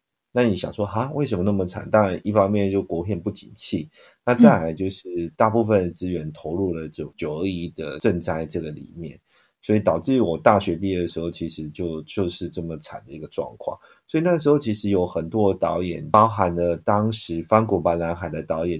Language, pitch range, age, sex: Chinese, 85-105 Hz, 30-49, male